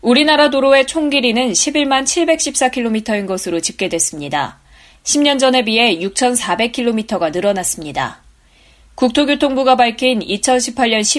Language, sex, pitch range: Korean, female, 195-270 Hz